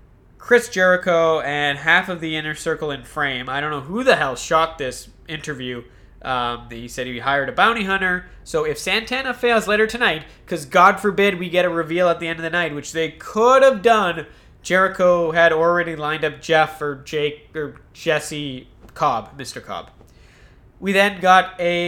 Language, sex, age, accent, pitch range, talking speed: English, male, 20-39, American, 150-190 Hz, 185 wpm